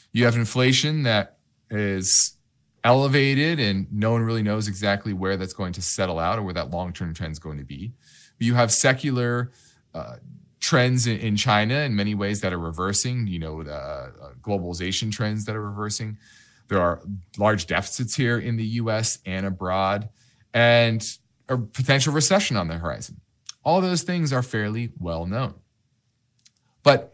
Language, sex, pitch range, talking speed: English, male, 100-135 Hz, 165 wpm